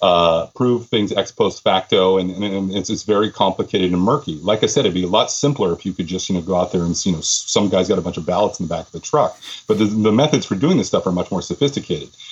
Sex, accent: male, American